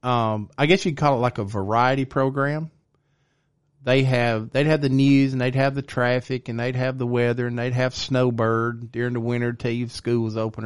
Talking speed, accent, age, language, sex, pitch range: 220 wpm, American, 40-59, English, male, 115-140 Hz